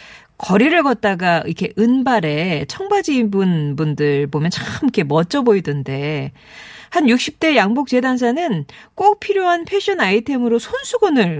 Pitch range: 170-265 Hz